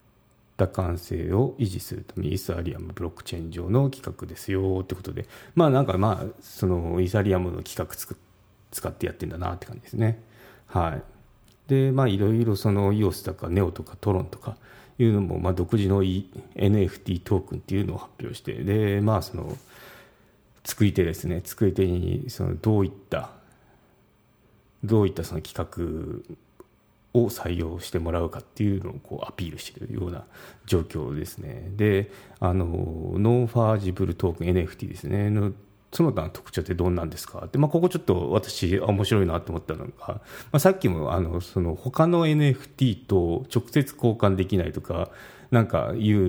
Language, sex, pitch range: Japanese, male, 90-120 Hz